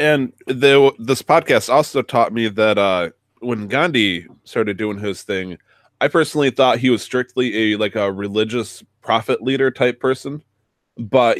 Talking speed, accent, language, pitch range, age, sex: 160 wpm, American, English, 105-120 Hz, 20-39, male